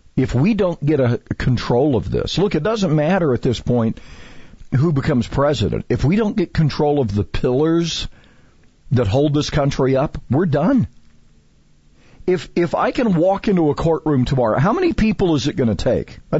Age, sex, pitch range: 50-69, male, 115-185 Hz